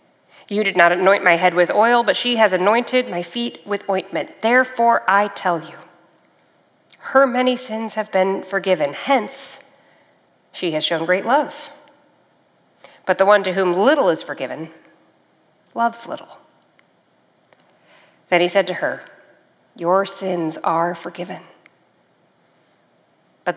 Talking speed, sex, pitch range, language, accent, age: 130 wpm, female, 180-240 Hz, English, American, 40-59